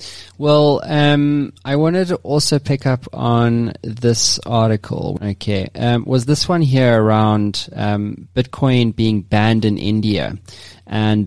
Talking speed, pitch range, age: 135 wpm, 105-125 Hz, 20-39